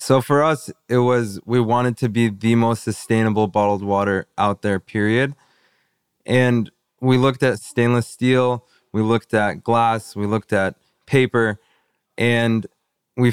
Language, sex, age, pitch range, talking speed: English, male, 20-39, 105-120 Hz, 150 wpm